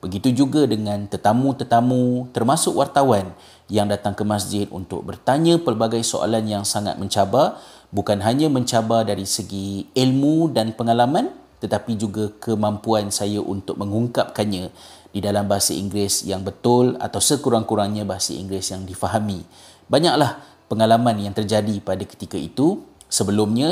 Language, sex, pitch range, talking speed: Malay, male, 100-115 Hz, 130 wpm